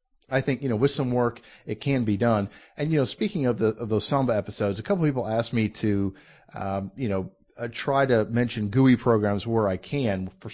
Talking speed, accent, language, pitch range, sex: 235 wpm, American, English, 100-125 Hz, male